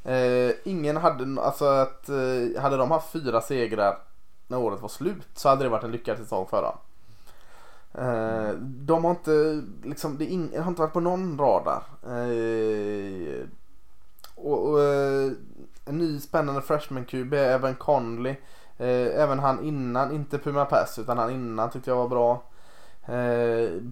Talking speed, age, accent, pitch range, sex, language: 155 wpm, 20-39, Norwegian, 120-155 Hz, male, Swedish